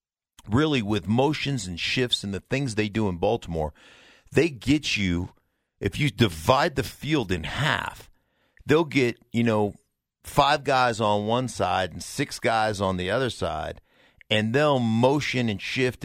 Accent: American